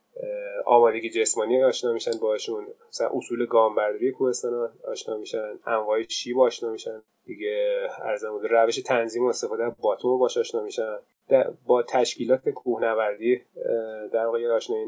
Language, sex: Persian, male